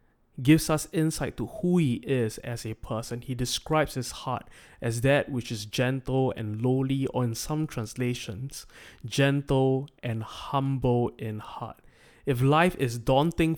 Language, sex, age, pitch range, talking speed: English, male, 20-39, 120-140 Hz, 150 wpm